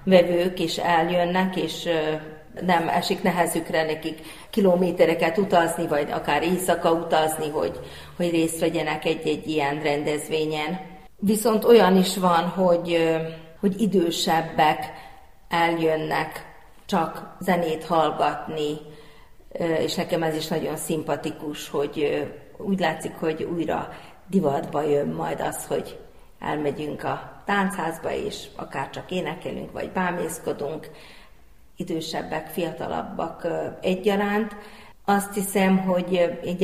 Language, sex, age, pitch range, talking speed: Hungarian, female, 40-59, 160-180 Hz, 110 wpm